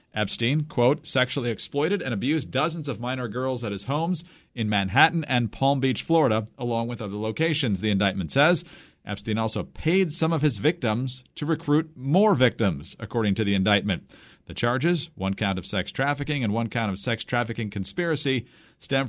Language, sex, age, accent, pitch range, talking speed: English, male, 40-59, American, 110-145 Hz, 175 wpm